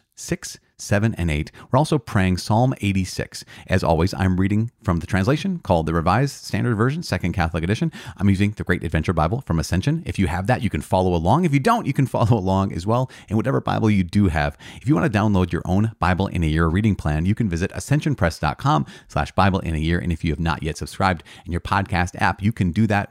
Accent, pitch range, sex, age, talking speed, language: American, 85-115 Hz, male, 30-49, 240 wpm, English